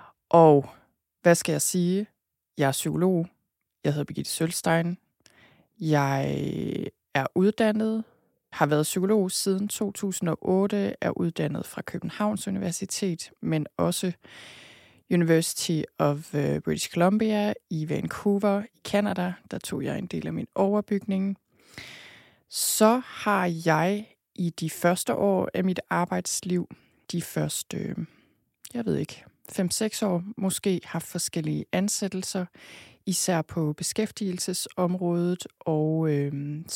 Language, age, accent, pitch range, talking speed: Danish, 20-39, native, 160-195 Hz, 115 wpm